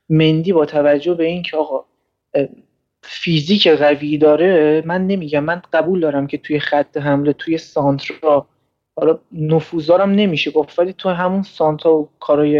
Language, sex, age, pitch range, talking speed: Persian, male, 30-49, 145-175 Hz, 145 wpm